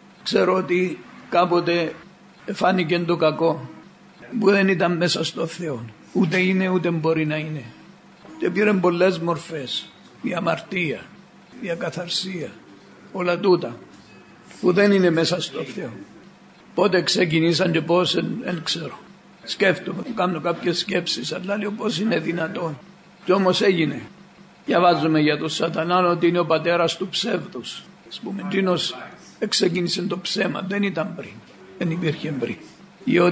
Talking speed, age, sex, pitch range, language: 130 wpm, 60-79, male, 165-190 Hz, Greek